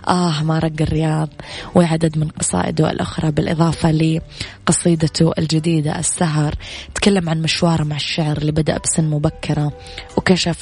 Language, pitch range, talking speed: Arabic, 150-170 Hz, 125 wpm